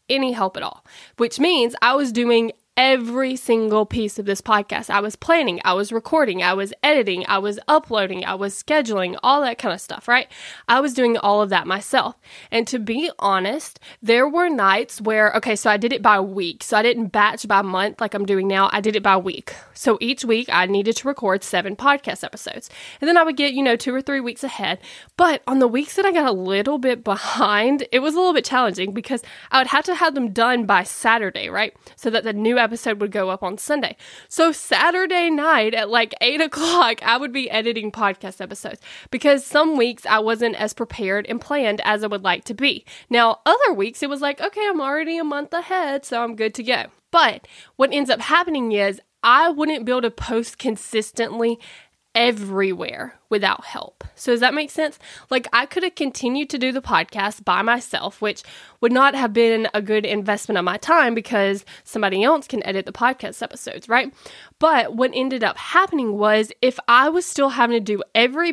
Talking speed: 215 wpm